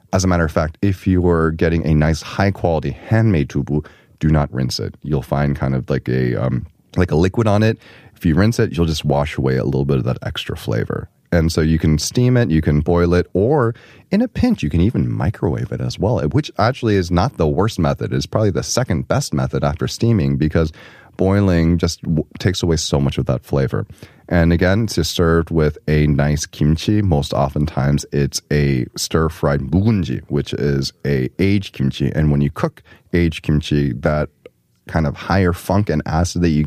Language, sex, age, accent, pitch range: Korean, male, 30-49, American, 75-95 Hz